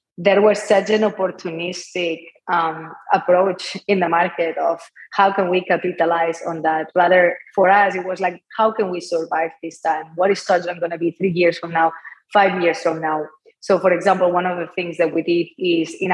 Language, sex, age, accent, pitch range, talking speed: English, female, 20-39, Spanish, 170-195 Hz, 205 wpm